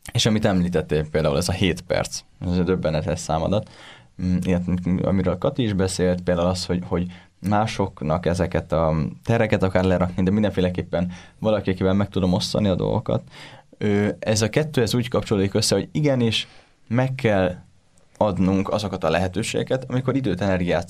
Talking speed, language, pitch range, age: 150 wpm, Hungarian, 90-115 Hz, 10-29